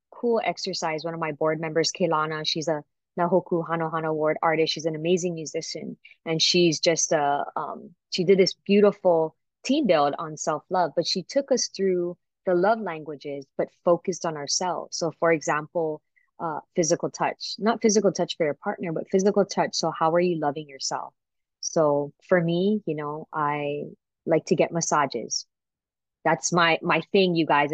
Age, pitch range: 20-39, 155-180 Hz